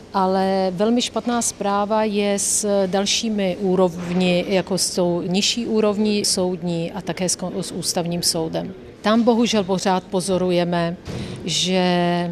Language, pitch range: Czech, 175-205 Hz